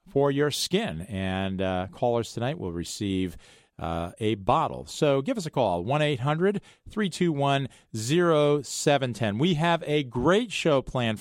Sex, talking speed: male, 140 wpm